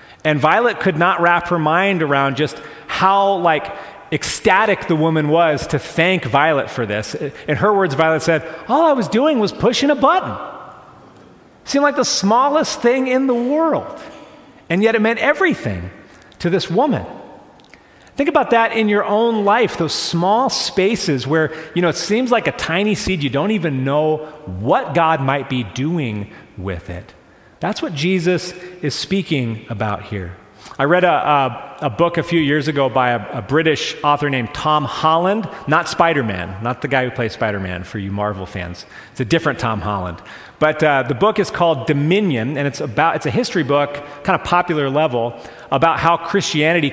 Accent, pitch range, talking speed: American, 135-200 Hz, 185 wpm